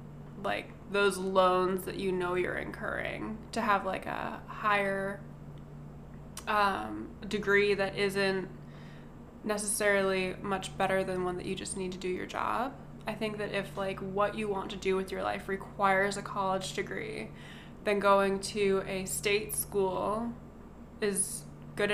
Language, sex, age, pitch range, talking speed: English, female, 20-39, 175-200 Hz, 150 wpm